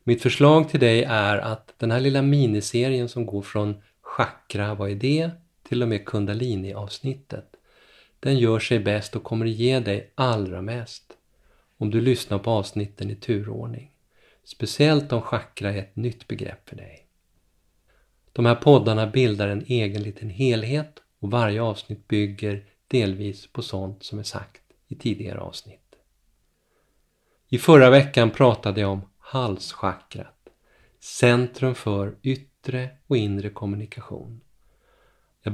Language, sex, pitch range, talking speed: Swedish, male, 105-125 Hz, 140 wpm